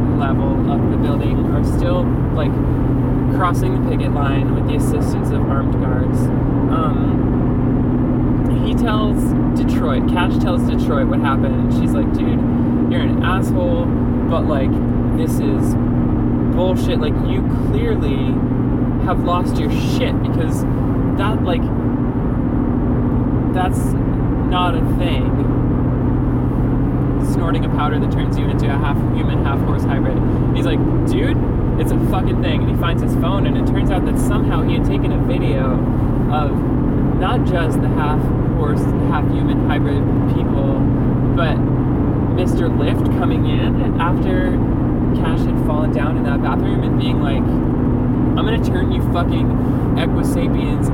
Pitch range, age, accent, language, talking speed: 125-135 Hz, 20-39, American, English, 140 wpm